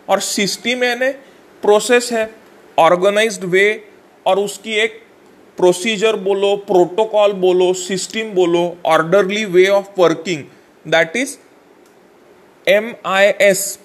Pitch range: 180-210 Hz